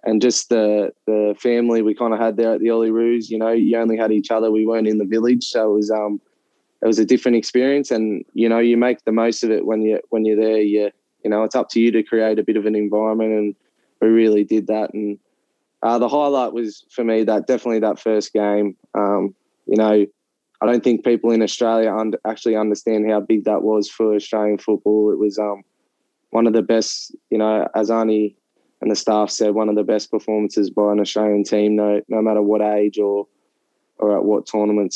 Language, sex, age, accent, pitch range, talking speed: English, male, 20-39, Australian, 105-115 Hz, 230 wpm